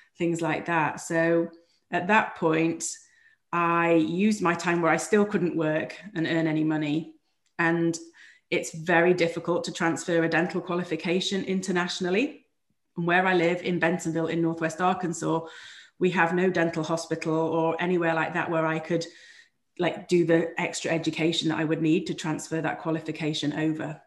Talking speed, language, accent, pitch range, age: 160 wpm, English, British, 160-175 Hz, 30-49